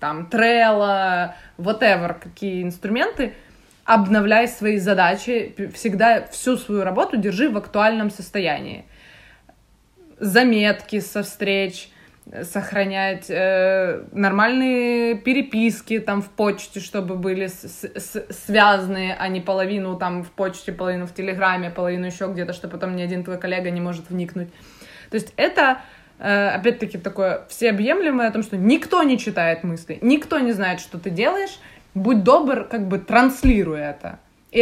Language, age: Russian, 20-39